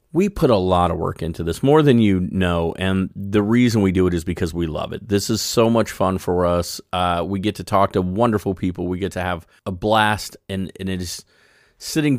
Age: 30-49